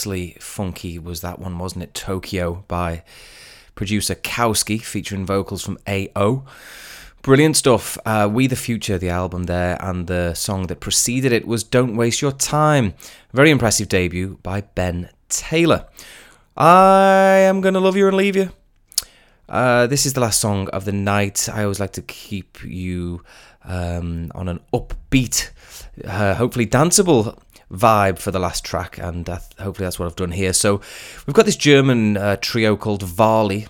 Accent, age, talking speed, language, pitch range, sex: British, 20-39, 165 wpm, English, 95-125 Hz, male